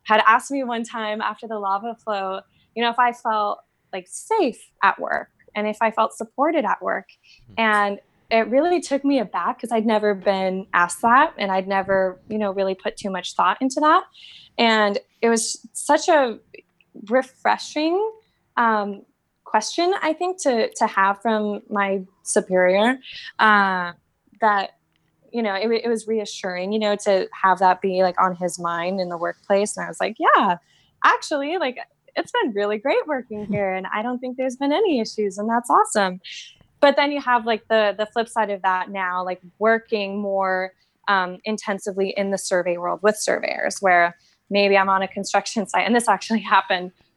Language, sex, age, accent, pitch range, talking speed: English, female, 10-29, American, 195-235 Hz, 185 wpm